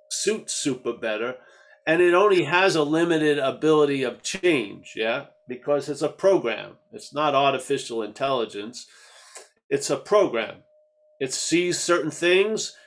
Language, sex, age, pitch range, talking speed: English, male, 50-69, 140-210 Hz, 130 wpm